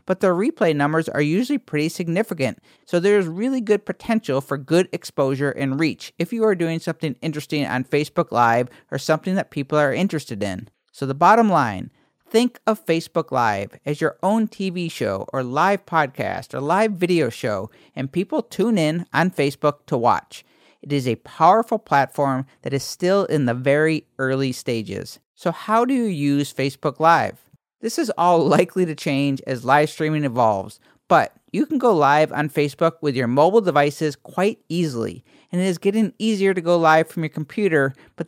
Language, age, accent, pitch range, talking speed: English, 40-59, American, 140-180 Hz, 185 wpm